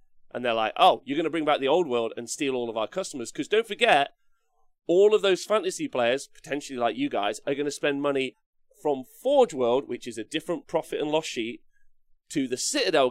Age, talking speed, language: 30-49, 225 wpm, English